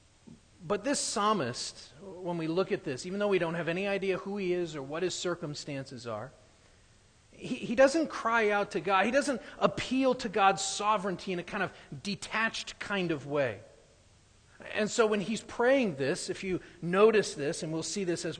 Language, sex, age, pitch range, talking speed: English, male, 40-59, 155-230 Hz, 190 wpm